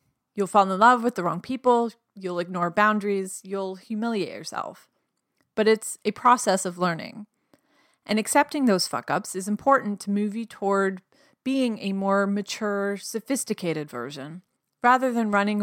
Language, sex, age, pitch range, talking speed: English, female, 30-49, 185-230 Hz, 150 wpm